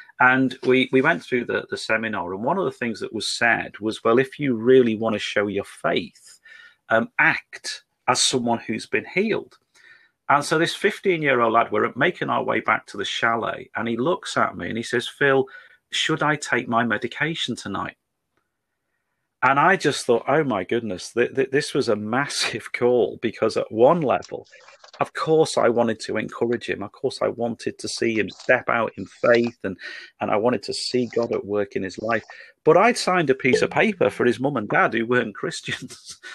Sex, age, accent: male, 40-59, British